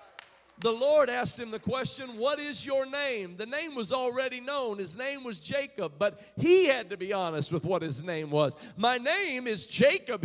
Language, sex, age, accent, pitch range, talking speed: English, male, 40-59, American, 235-300 Hz, 200 wpm